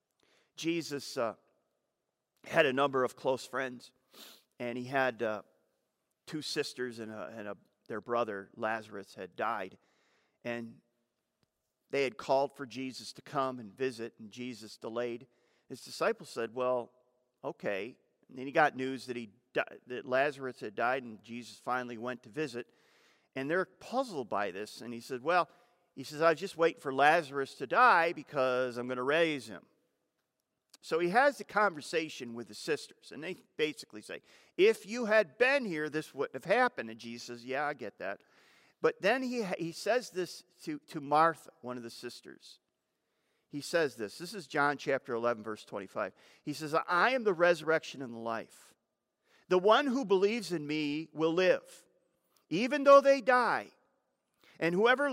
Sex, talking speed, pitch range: male, 165 wpm, 120-175 Hz